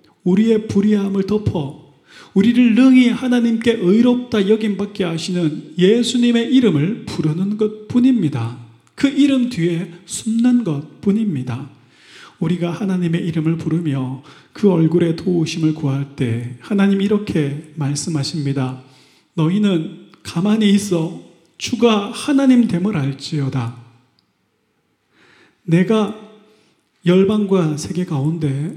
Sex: male